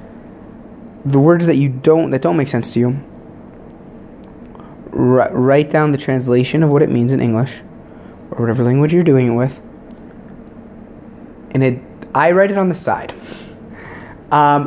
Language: English